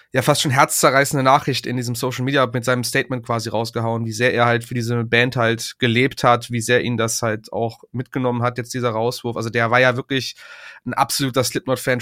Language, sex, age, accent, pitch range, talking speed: German, male, 30-49, German, 120-135 Hz, 215 wpm